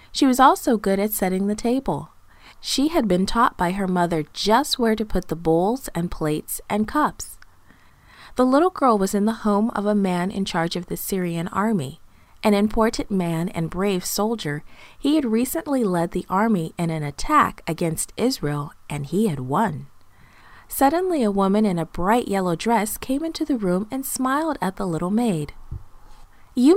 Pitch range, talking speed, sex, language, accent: 170-230 Hz, 180 wpm, female, English, American